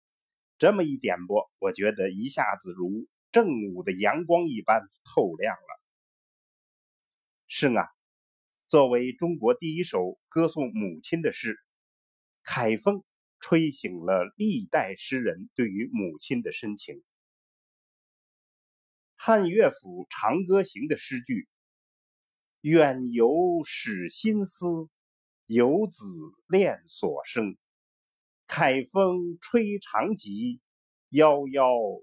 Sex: male